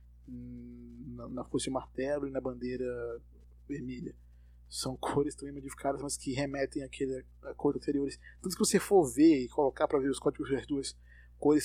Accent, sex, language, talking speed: Brazilian, male, Portuguese, 175 wpm